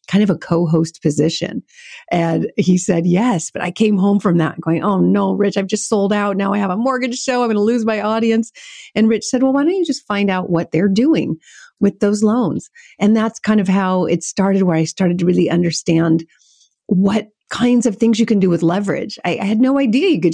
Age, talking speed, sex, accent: 50-69, 235 wpm, female, American